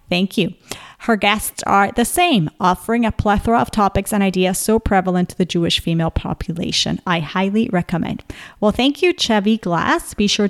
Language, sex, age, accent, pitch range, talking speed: English, female, 30-49, American, 180-225 Hz, 175 wpm